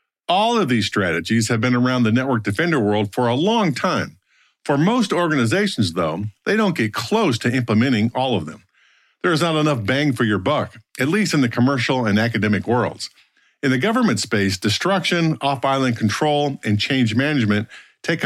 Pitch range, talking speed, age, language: 105-145 Hz, 180 wpm, 50-69, English